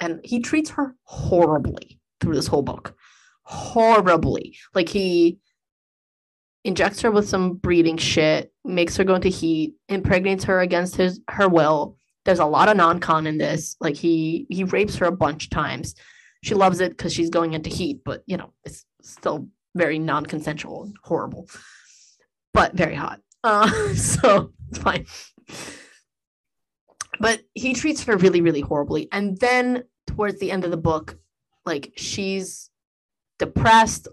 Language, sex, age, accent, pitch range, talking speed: English, female, 20-39, American, 160-215 Hz, 155 wpm